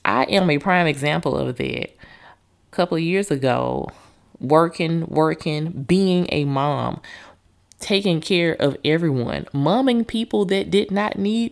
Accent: American